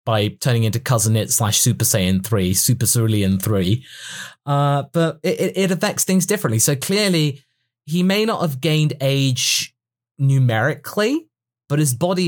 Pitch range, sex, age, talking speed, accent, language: 120-160 Hz, male, 20-39, 150 wpm, British, English